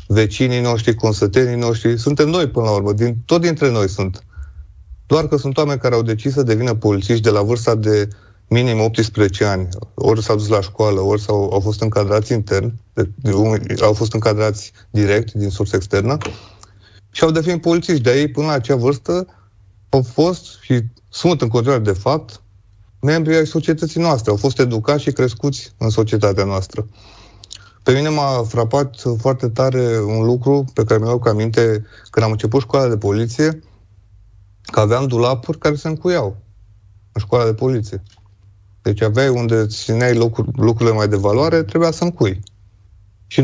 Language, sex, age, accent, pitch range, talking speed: Romanian, male, 30-49, native, 105-135 Hz, 170 wpm